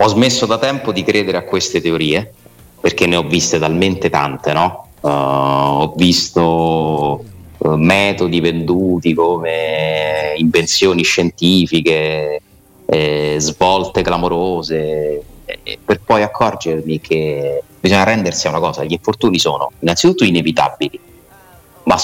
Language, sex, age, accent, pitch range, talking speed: Italian, male, 30-49, native, 80-95 Hz, 115 wpm